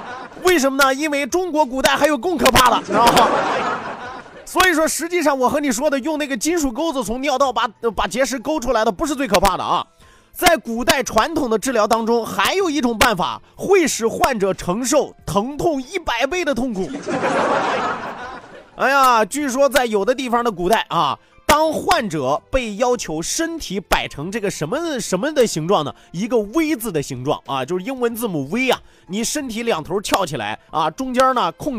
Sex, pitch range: male, 200-300 Hz